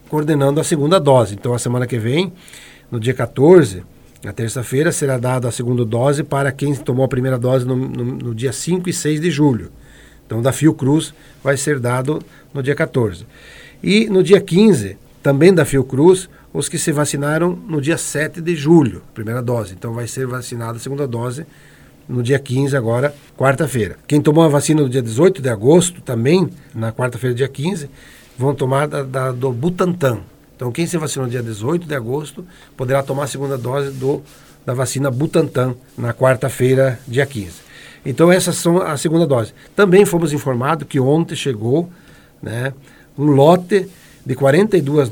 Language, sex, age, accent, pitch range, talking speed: Portuguese, male, 60-79, Brazilian, 125-155 Hz, 175 wpm